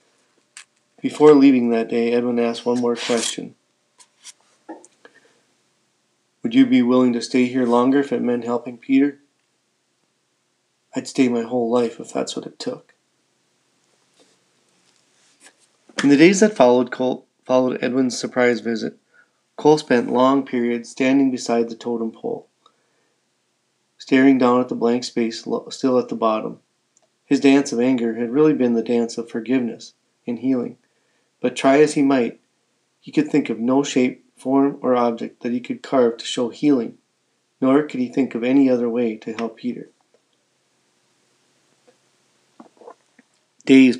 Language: English